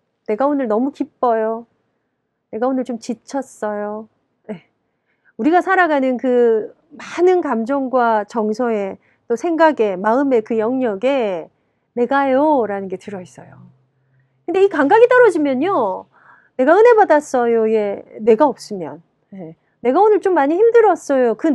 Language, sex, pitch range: Korean, female, 220-340 Hz